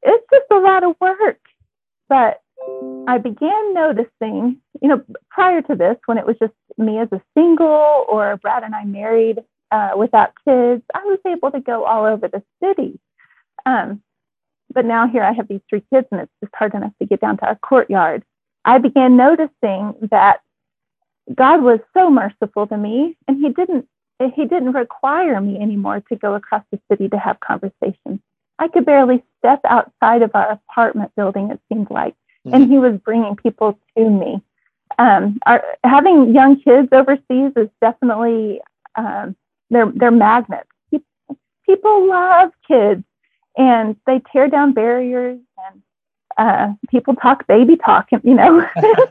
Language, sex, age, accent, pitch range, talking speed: English, female, 30-49, American, 215-290 Hz, 160 wpm